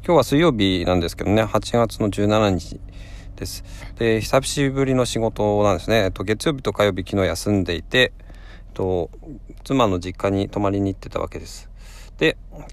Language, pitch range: Japanese, 95-120 Hz